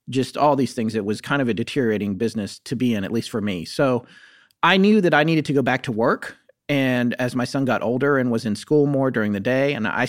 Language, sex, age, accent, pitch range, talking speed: English, male, 40-59, American, 115-145 Hz, 270 wpm